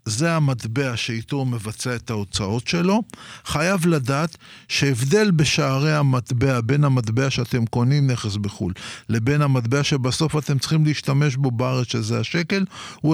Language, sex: Hebrew, male